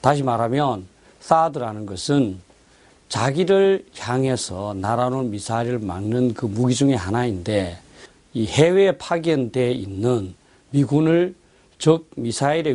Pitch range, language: 115-150 Hz, Korean